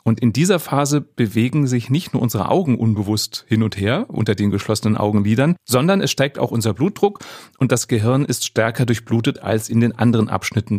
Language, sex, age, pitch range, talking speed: German, male, 30-49, 105-135 Hz, 195 wpm